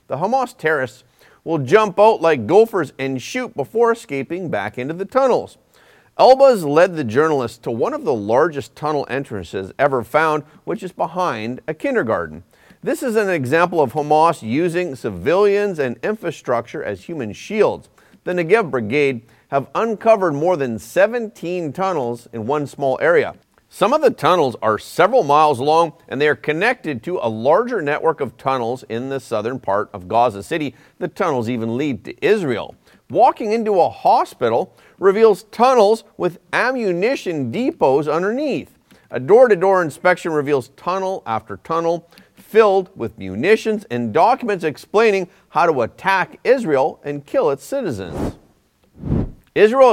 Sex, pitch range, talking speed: male, 135-215 Hz, 150 wpm